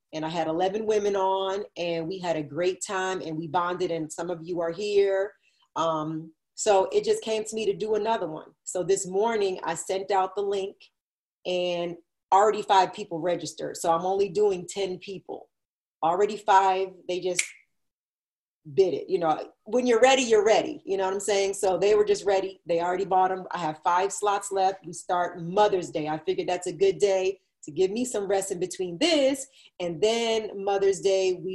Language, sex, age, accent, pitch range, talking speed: English, female, 30-49, American, 175-210 Hz, 200 wpm